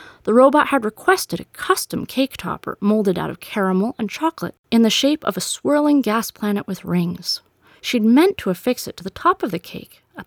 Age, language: 30-49, English